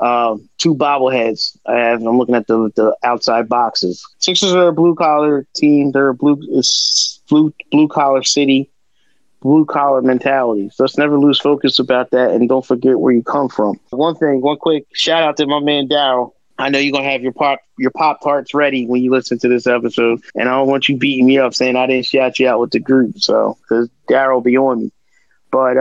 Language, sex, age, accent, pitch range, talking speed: English, male, 20-39, American, 125-155 Hz, 215 wpm